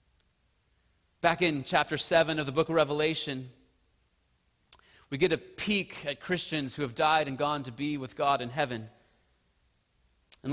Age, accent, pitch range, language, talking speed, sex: 30-49, American, 145-195 Hz, English, 155 wpm, male